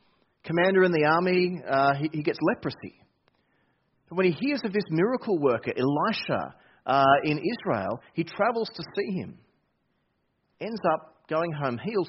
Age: 40-59